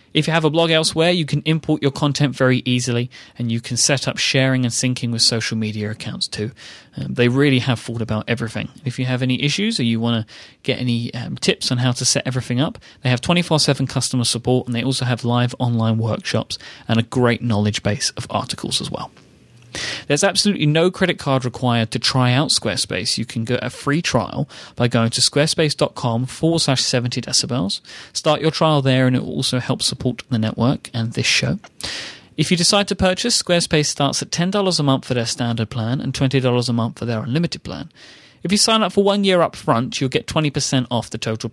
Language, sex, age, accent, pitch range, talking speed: English, male, 30-49, British, 120-150 Hz, 215 wpm